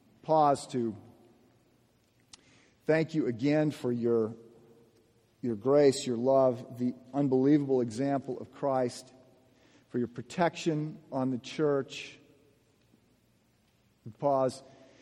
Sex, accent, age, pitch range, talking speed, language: male, American, 50-69, 120-150 Hz, 90 wpm, English